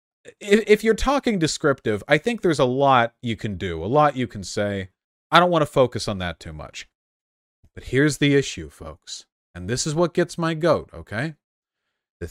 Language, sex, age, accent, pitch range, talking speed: English, male, 30-49, American, 100-155 Hz, 195 wpm